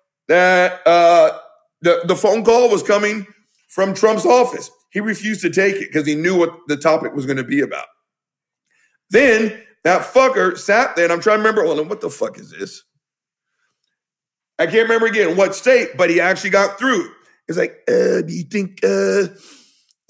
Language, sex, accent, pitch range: English, male, American, 180-230 Hz